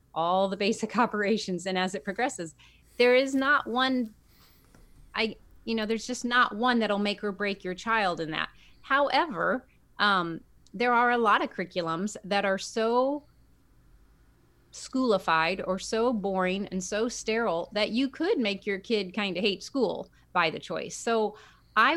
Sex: female